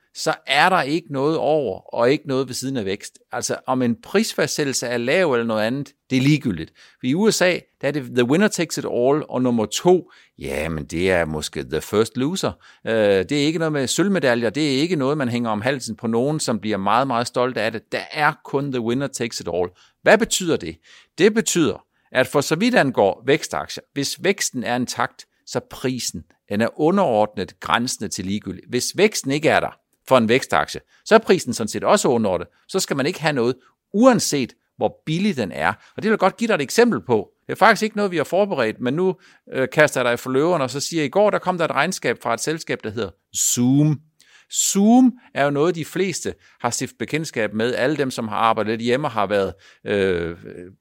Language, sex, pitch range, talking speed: Danish, male, 120-175 Hz, 225 wpm